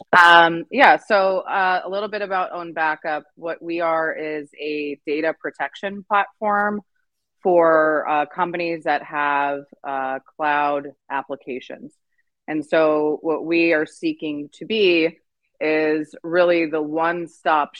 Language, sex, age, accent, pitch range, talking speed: English, female, 30-49, American, 145-165 Hz, 130 wpm